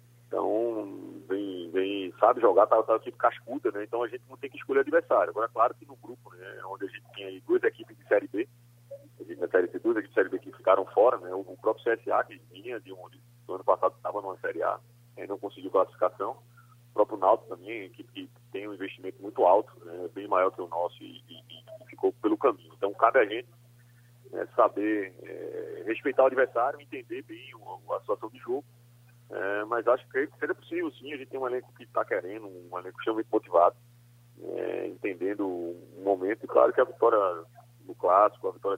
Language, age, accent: Portuguese, 40-59, Brazilian